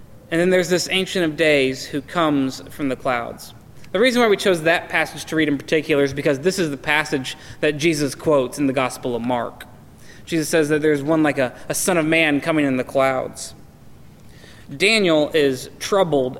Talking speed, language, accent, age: 200 wpm, English, American, 20-39